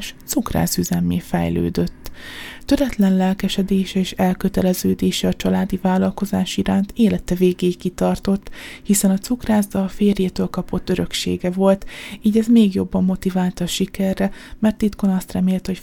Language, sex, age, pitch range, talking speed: Hungarian, female, 20-39, 185-205 Hz, 130 wpm